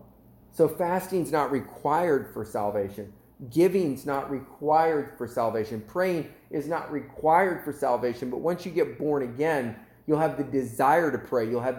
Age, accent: 40-59, American